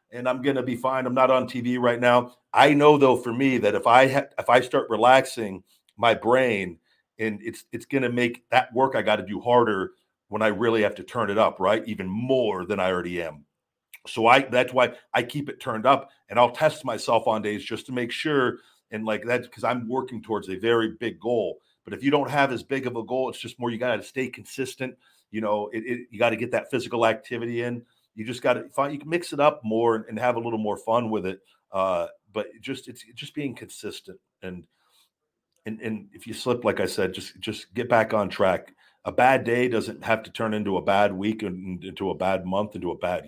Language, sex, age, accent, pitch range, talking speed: English, male, 40-59, American, 100-125 Hz, 245 wpm